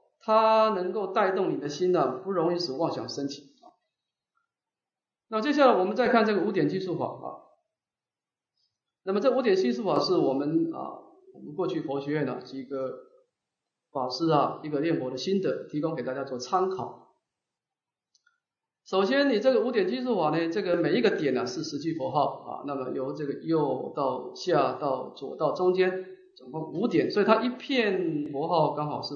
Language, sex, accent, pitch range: English, male, Chinese, 165-235 Hz